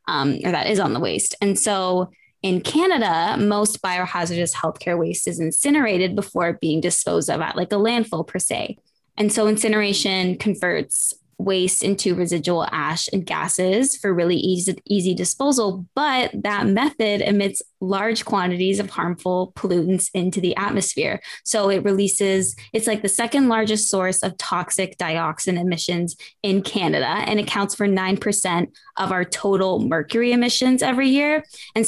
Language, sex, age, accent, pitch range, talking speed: English, female, 10-29, American, 185-215 Hz, 150 wpm